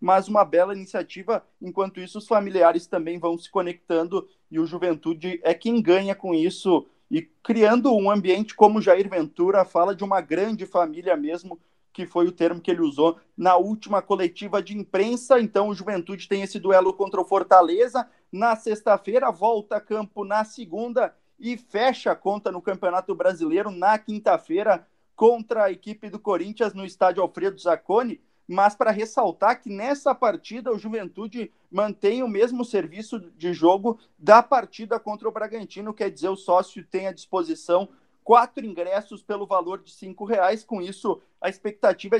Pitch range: 180-220 Hz